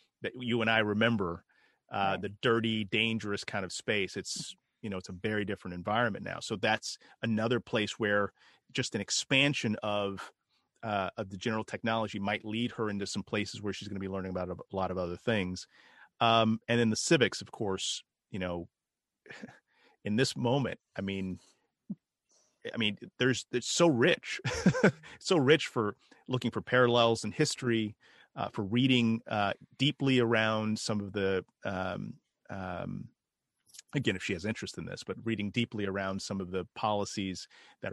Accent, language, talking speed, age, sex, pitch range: American, English, 170 wpm, 30-49, male, 100-120 Hz